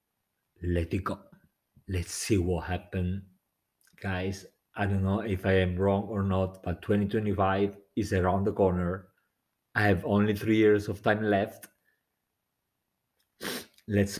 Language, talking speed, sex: English, 135 wpm, male